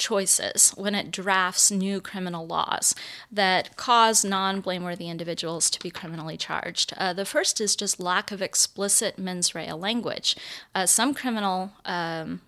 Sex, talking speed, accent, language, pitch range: female, 145 wpm, American, English, 175-215 Hz